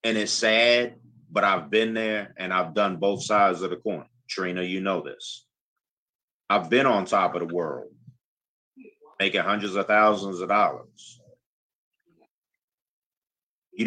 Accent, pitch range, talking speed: American, 90-115 Hz, 145 wpm